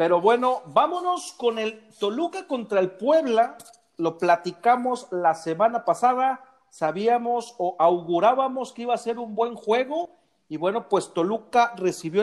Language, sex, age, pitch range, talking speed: Spanish, male, 40-59, 180-275 Hz, 140 wpm